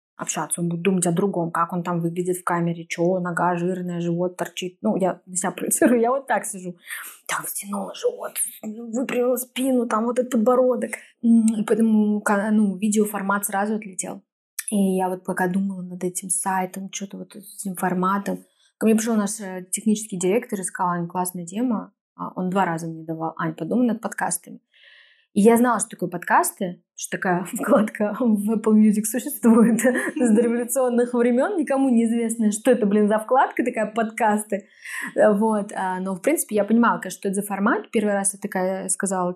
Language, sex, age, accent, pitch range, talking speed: Russian, female, 20-39, native, 185-230 Hz, 175 wpm